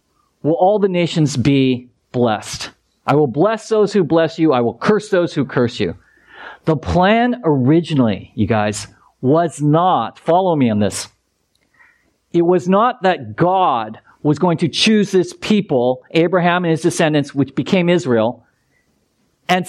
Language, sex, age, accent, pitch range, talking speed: English, male, 40-59, American, 150-200 Hz, 150 wpm